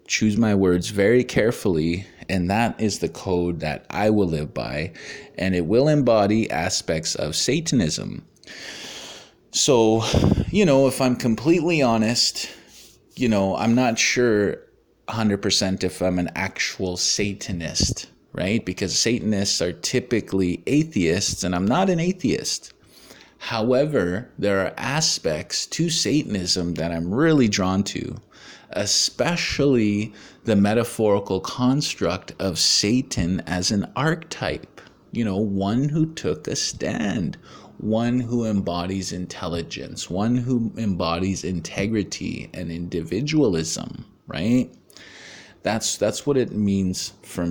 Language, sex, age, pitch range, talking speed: English, male, 20-39, 90-120 Hz, 120 wpm